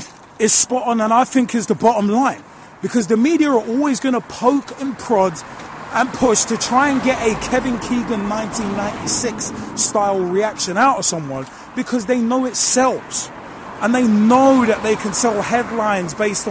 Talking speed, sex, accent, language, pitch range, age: 180 wpm, male, British, English, 195-245 Hz, 30-49